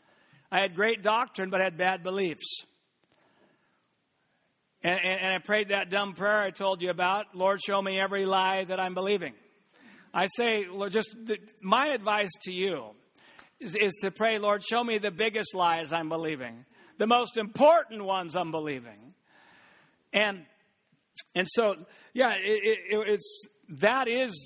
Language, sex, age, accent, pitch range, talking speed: English, male, 60-79, American, 185-235 Hz, 155 wpm